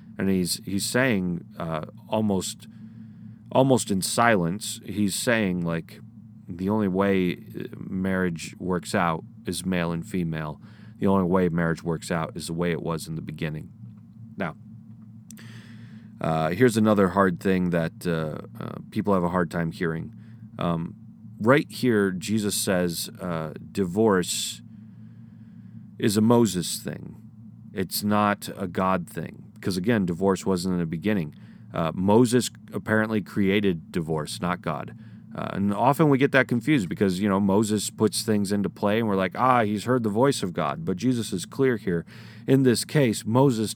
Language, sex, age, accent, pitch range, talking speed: English, male, 30-49, American, 95-110 Hz, 155 wpm